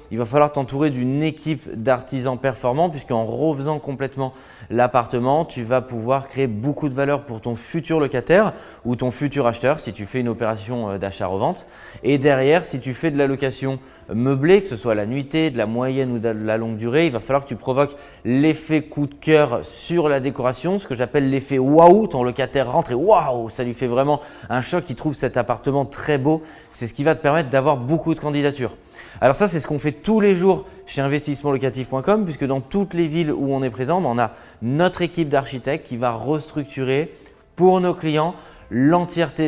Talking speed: 210 wpm